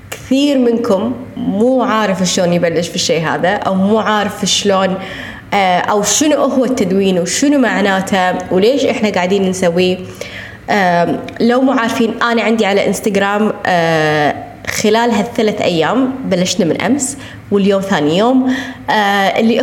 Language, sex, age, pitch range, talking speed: Arabic, female, 20-39, 190-245 Hz, 120 wpm